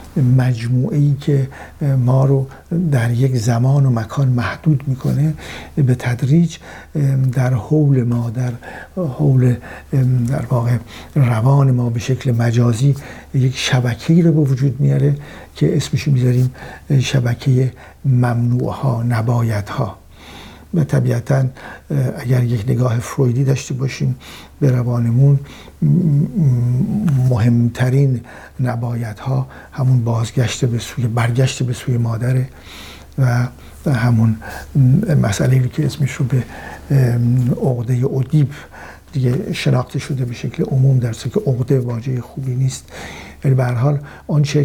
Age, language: 60-79, Persian